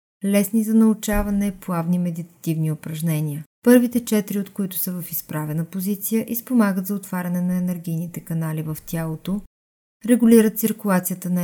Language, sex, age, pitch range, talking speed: Bulgarian, female, 30-49, 175-205 Hz, 130 wpm